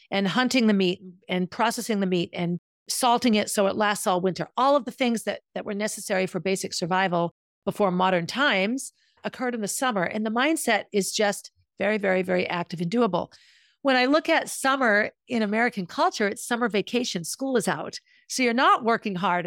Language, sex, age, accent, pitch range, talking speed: English, female, 50-69, American, 185-240 Hz, 195 wpm